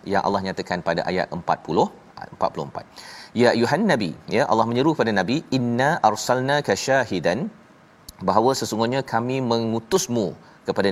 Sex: male